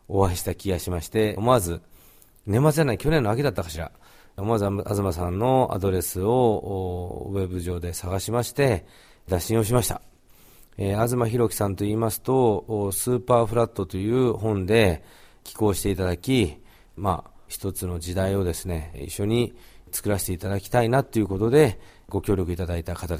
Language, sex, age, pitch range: Japanese, male, 40-59, 90-110 Hz